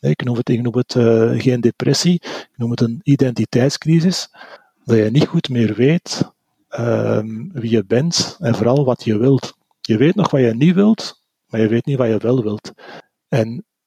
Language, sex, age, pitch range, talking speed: Dutch, male, 40-59, 115-150 Hz, 195 wpm